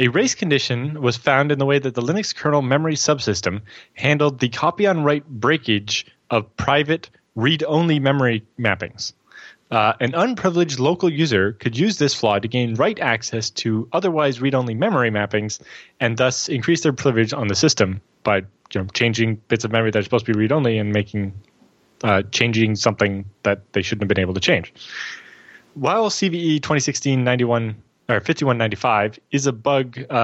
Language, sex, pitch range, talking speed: English, male, 115-145 Hz, 165 wpm